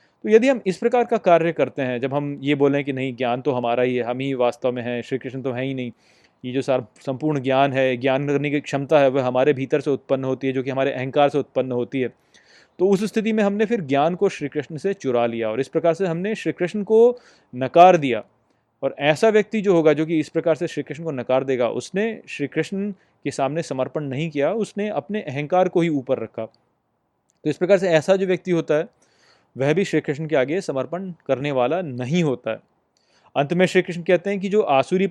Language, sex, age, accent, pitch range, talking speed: Hindi, male, 30-49, native, 130-185 Hz, 240 wpm